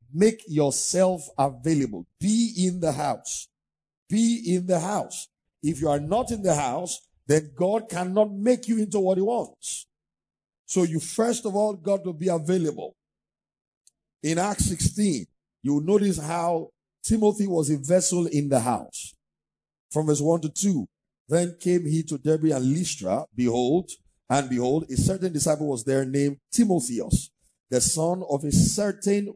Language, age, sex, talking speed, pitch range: English, 50-69, male, 155 wpm, 145-190 Hz